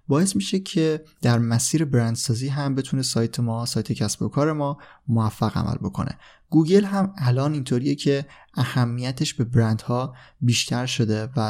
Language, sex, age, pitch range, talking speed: Persian, male, 20-39, 120-150 Hz, 140 wpm